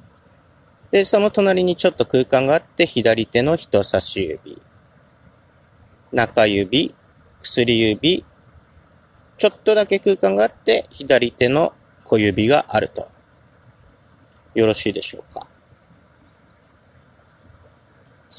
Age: 40-59